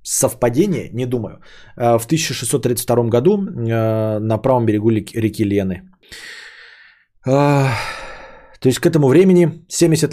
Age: 30-49